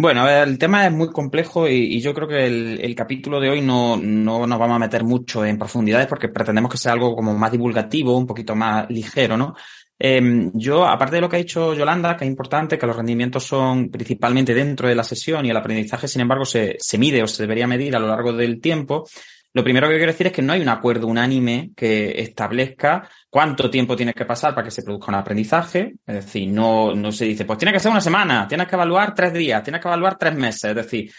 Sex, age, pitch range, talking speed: male, 20-39, 115-150 Hz, 240 wpm